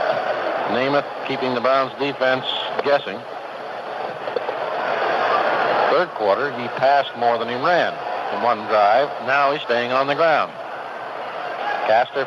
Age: 60-79